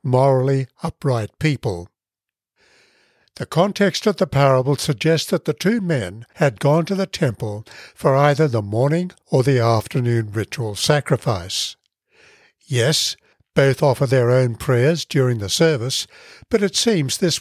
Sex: male